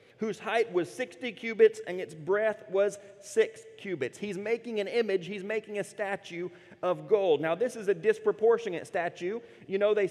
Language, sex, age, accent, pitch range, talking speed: English, male, 30-49, American, 170-220 Hz, 180 wpm